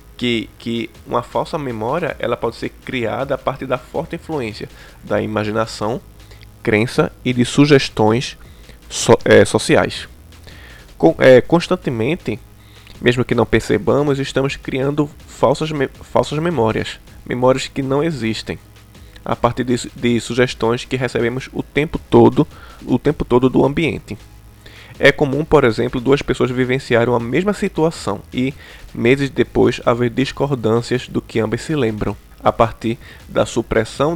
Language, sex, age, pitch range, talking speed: Portuguese, male, 20-39, 105-135 Hz, 125 wpm